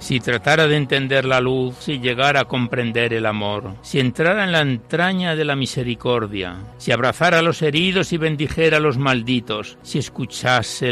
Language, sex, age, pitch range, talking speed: Spanish, male, 60-79, 120-155 Hz, 175 wpm